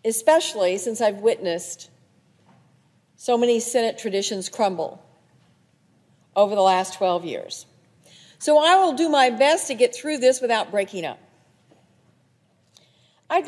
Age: 50-69